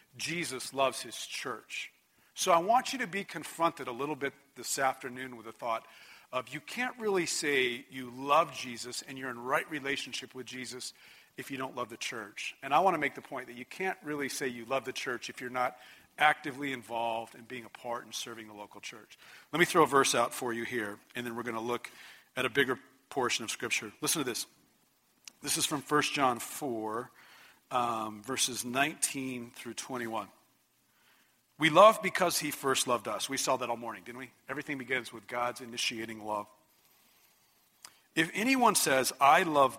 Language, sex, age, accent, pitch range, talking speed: English, male, 40-59, American, 120-150 Hz, 195 wpm